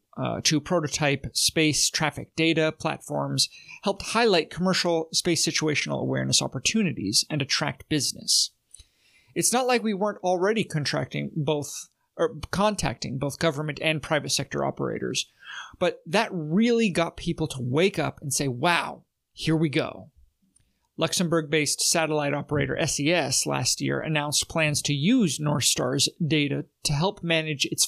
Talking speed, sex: 135 wpm, male